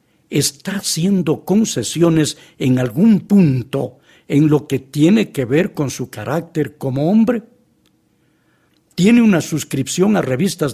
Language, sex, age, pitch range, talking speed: English, male, 60-79, 140-185 Hz, 125 wpm